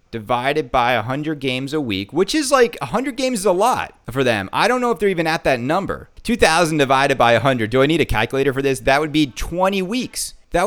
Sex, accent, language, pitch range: male, American, English, 135-205 Hz